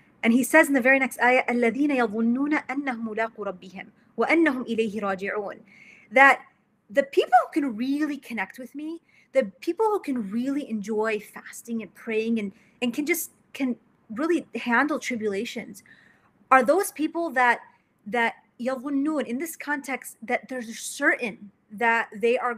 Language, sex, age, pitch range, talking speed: English, female, 30-49, 220-285 Hz, 130 wpm